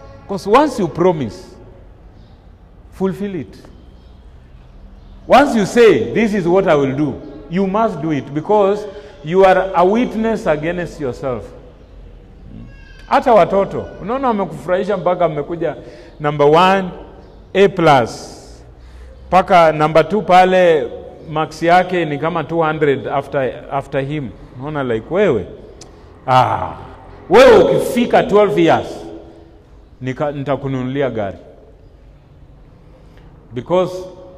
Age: 40-59